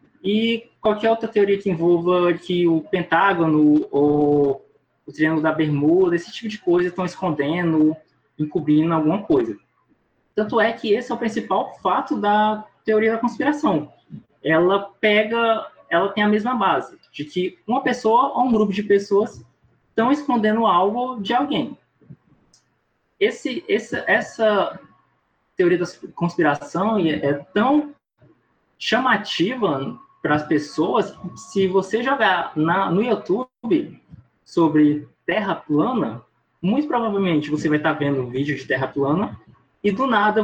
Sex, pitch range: male, 160-215 Hz